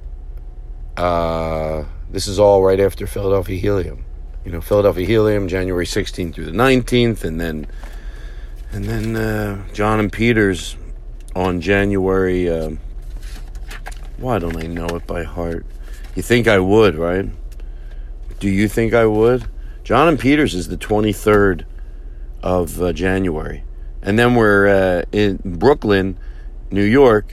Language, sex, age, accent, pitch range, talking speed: English, male, 50-69, American, 85-115 Hz, 135 wpm